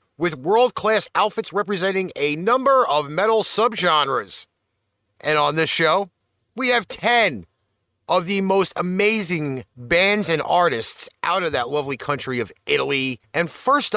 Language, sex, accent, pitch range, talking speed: English, male, American, 135-210 Hz, 140 wpm